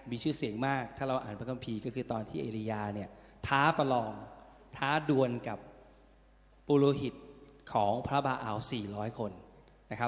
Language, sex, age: Thai, male, 20-39